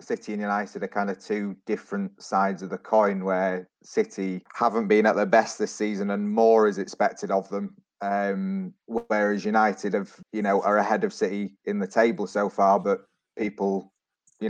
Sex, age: male, 30-49